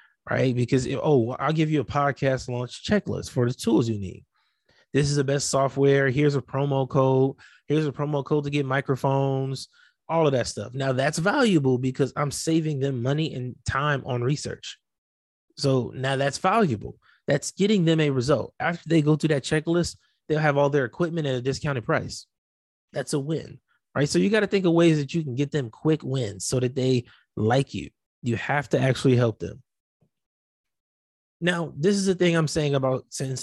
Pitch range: 125-155 Hz